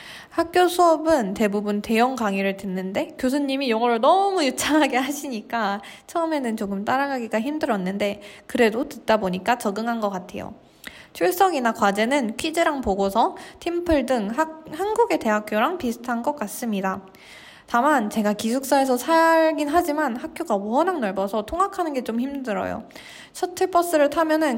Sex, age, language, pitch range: female, 20-39, Korean, 210-295 Hz